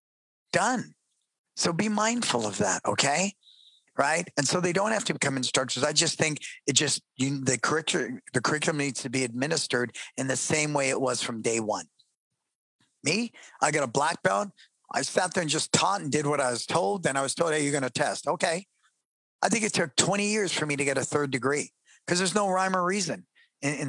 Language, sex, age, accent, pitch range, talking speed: English, male, 50-69, American, 130-175 Hz, 220 wpm